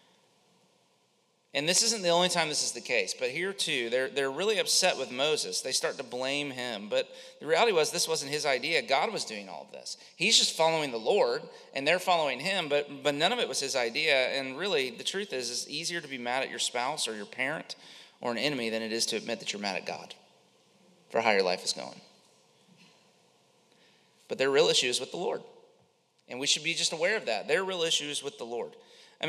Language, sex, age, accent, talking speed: English, male, 30-49, American, 235 wpm